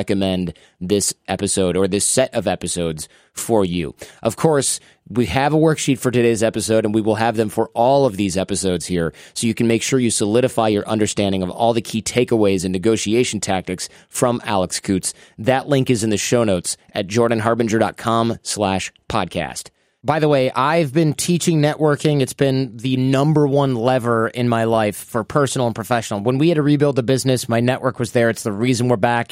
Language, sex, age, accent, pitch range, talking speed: English, male, 30-49, American, 110-140 Hz, 200 wpm